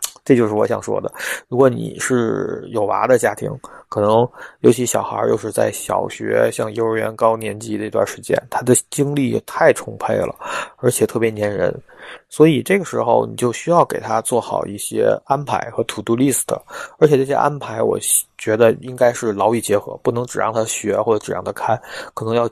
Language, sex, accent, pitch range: Chinese, male, native, 110-125 Hz